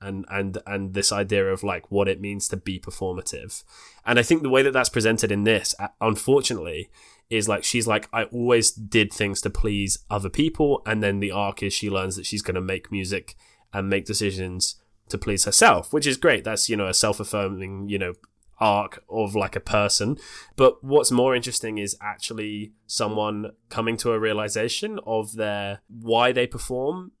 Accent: British